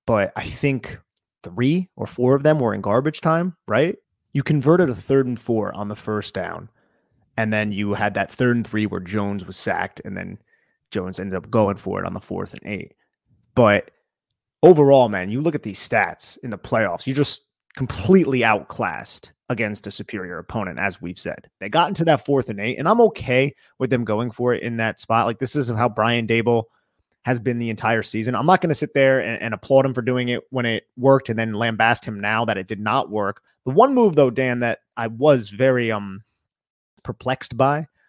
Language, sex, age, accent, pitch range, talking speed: English, male, 30-49, American, 105-135 Hz, 215 wpm